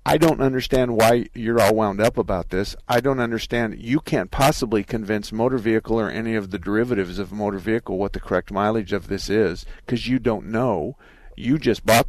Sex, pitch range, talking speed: male, 100-115 Hz, 205 wpm